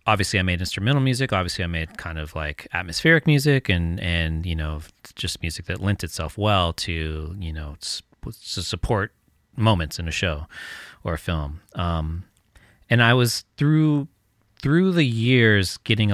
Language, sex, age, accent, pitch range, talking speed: English, male, 30-49, American, 80-100 Hz, 165 wpm